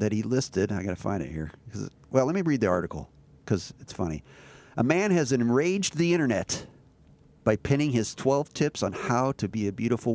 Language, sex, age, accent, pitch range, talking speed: English, male, 50-69, American, 105-130 Hz, 205 wpm